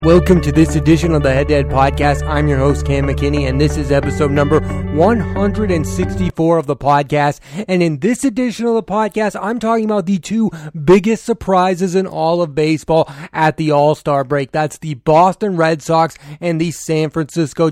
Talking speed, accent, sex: 185 wpm, American, male